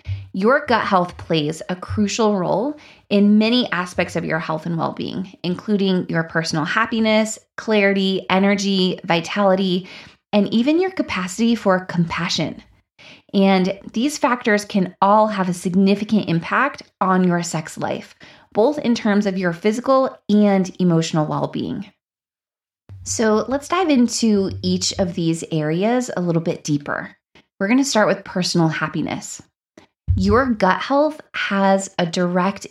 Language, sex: English, female